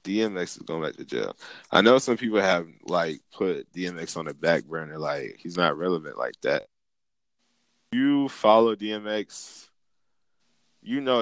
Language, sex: English, male